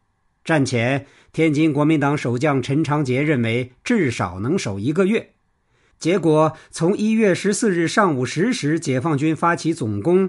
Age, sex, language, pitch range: 50-69, male, Chinese, 120-165 Hz